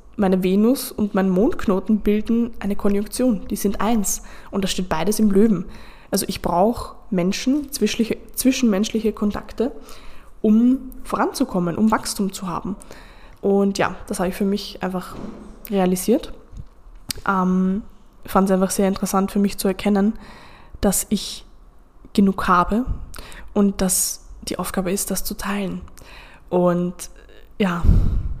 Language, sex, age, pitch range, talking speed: German, female, 20-39, 190-215 Hz, 130 wpm